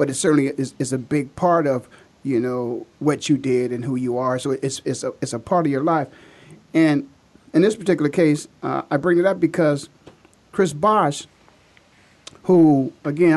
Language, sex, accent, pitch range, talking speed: English, male, American, 145-180 Hz, 195 wpm